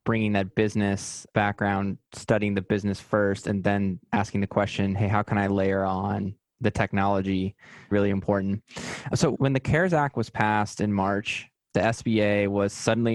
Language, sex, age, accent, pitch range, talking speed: English, male, 20-39, American, 100-115 Hz, 165 wpm